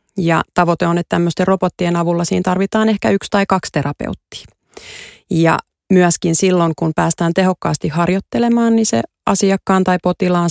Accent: native